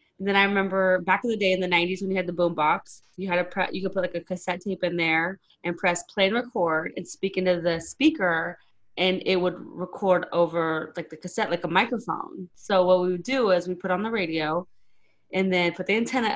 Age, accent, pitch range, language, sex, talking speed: 20-39, American, 175-195 Hz, English, female, 240 wpm